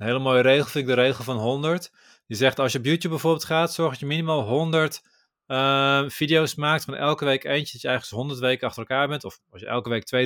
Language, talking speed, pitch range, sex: Dutch, 255 wpm, 130-155 Hz, male